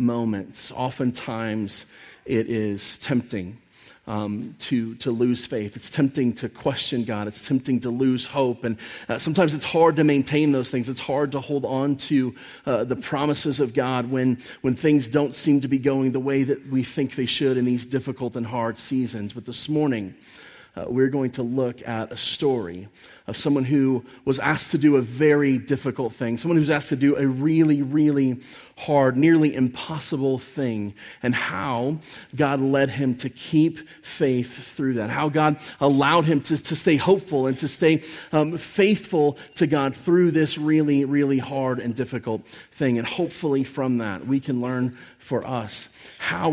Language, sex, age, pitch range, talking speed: English, male, 30-49, 120-150 Hz, 180 wpm